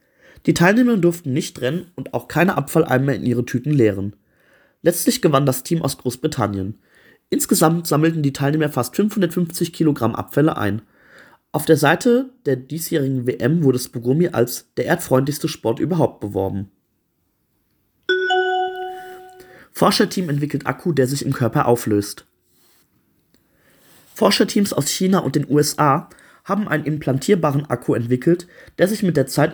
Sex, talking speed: male, 135 wpm